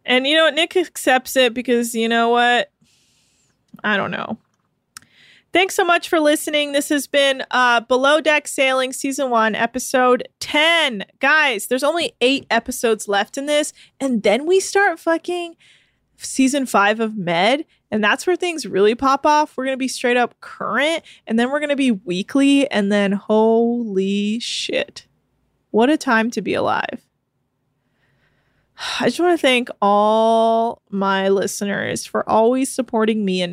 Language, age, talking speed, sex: English, 20-39, 165 wpm, female